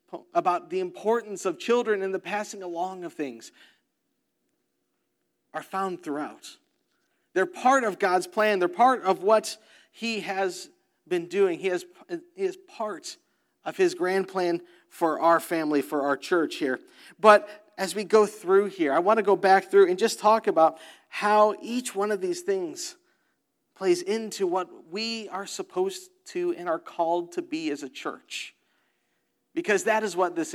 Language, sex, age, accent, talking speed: English, male, 40-59, American, 165 wpm